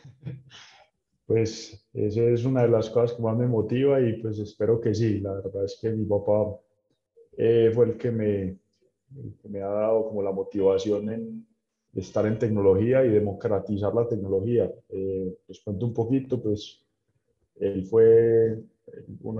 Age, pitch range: 20-39, 100-115 Hz